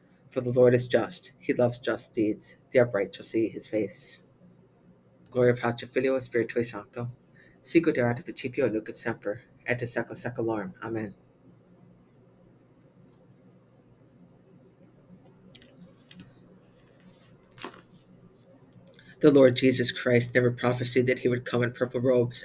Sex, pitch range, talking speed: female, 115-125 Hz, 110 wpm